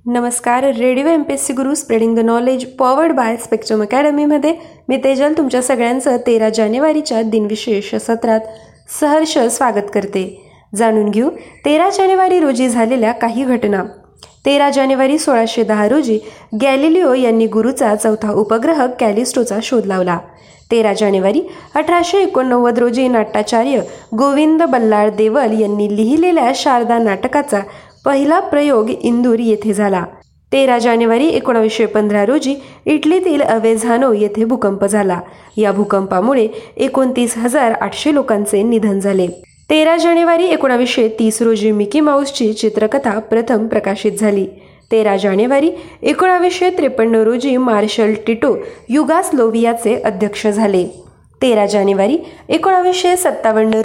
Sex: female